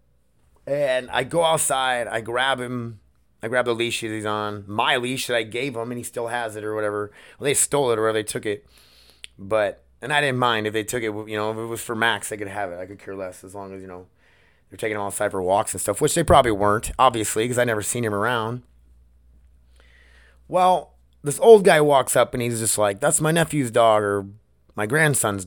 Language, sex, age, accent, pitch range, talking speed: English, male, 30-49, American, 100-130 Hz, 235 wpm